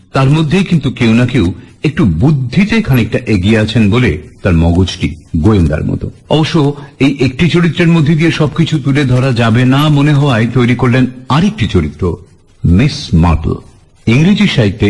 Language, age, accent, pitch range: Bengali, 50-69, native, 95-140 Hz